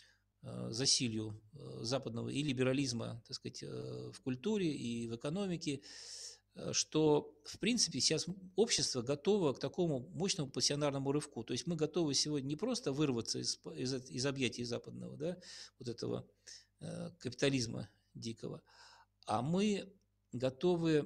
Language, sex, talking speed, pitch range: Russian, male, 125 wpm, 120-160 Hz